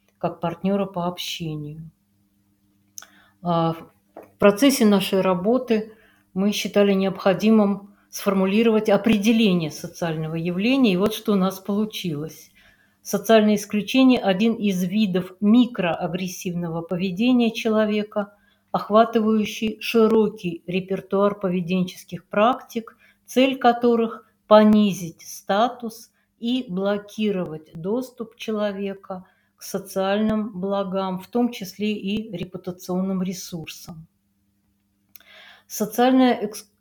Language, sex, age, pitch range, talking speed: Russian, female, 50-69, 175-220 Hz, 85 wpm